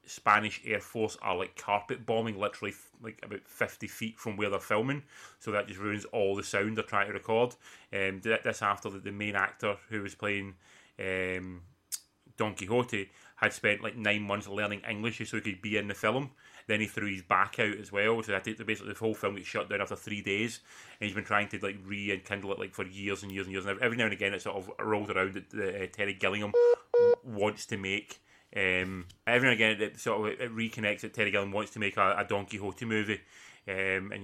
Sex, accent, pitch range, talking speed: male, British, 100-110 Hz, 230 wpm